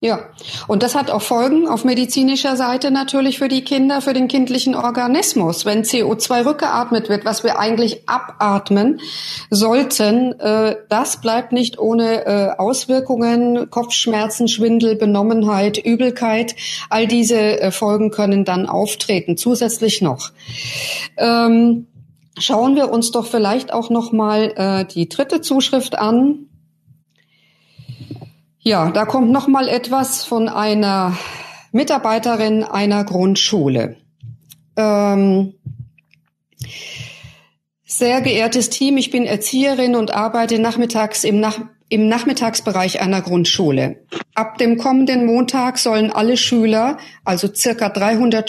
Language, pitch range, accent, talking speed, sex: German, 195-245 Hz, German, 115 wpm, female